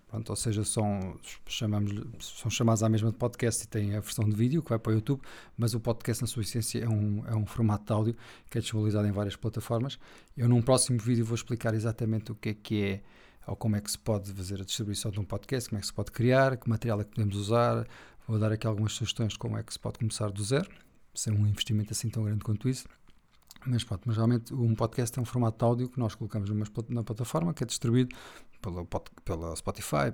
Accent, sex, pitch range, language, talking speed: Portuguese, male, 105-125 Hz, Portuguese, 240 wpm